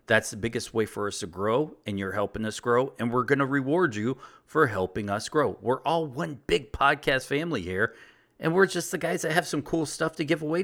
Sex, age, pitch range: male, 40-59, 105-145 Hz